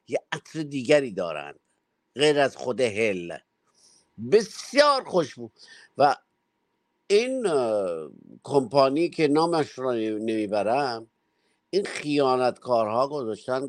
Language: Persian